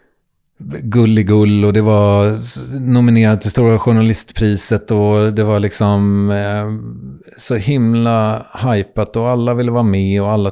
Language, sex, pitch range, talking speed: English, male, 105-140 Hz, 130 wpm